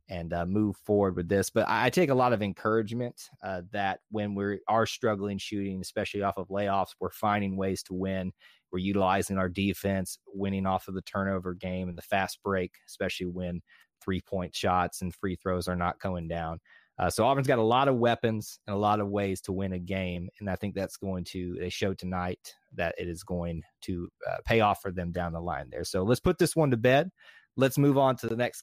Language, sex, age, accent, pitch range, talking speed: English, male, 30-49, American, 95-120 Hz, 225 wpm